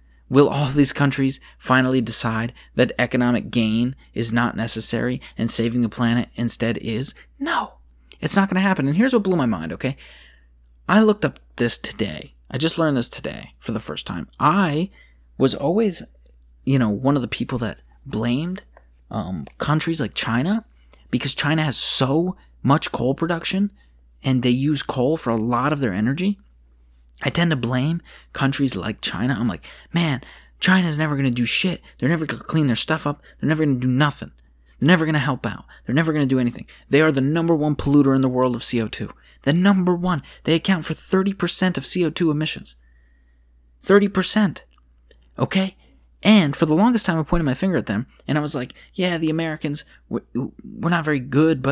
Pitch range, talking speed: 115-165 Hz, 190 wpm